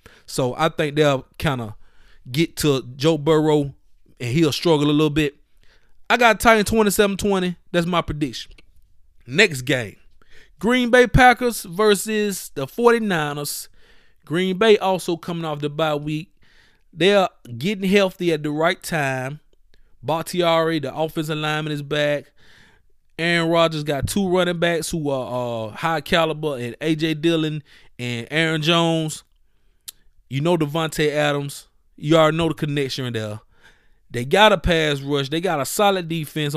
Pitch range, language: 145-195 Hz, English